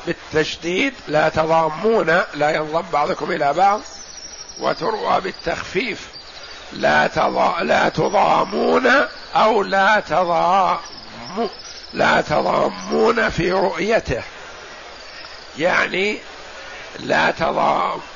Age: 60-79